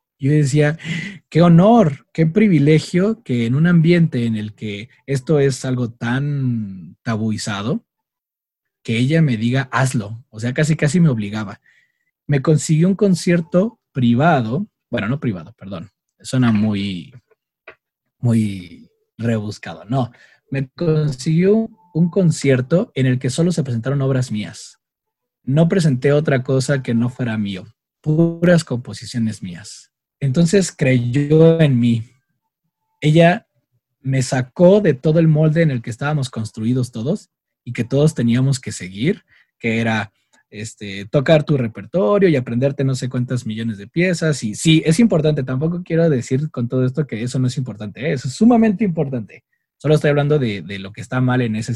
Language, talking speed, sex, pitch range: Spanish, 155 wpm, male, 120-165 Hz